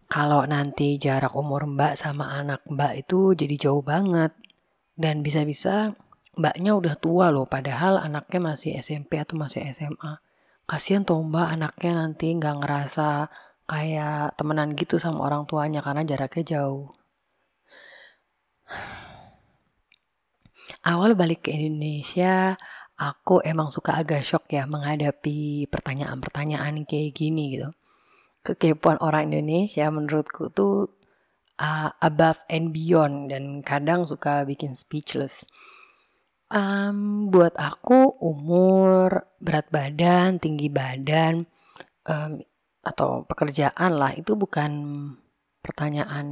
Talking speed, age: 110 wpm, 20-39